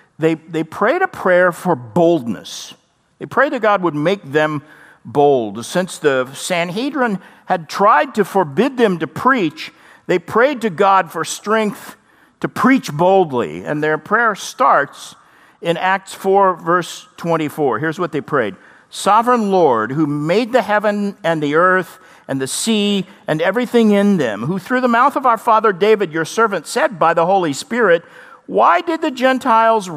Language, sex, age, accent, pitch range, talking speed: English, male, 50-69, American, 165-225 Hz, 165 wpm